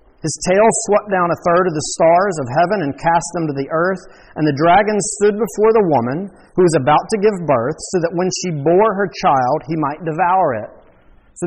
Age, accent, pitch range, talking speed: 40-59, American, 150-205 Hz, 220 wpm